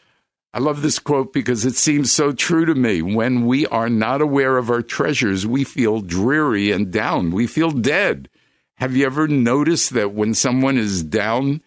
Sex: male